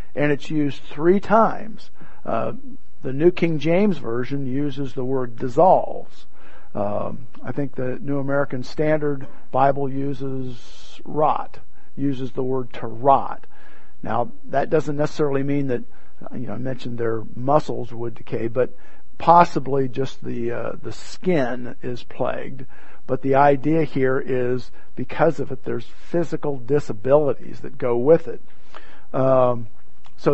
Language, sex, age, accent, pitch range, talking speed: English, male, 50-69, American, 125-150 Hz, 140 wpm